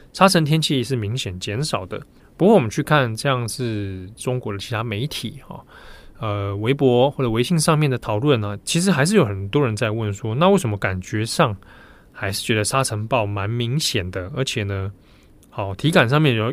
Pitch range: 105-150 Hz